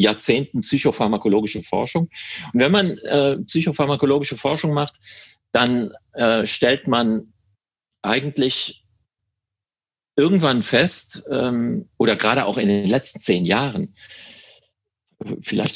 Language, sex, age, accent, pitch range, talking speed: English, male, 40-59, German, 110-145 Hz, 105 wpm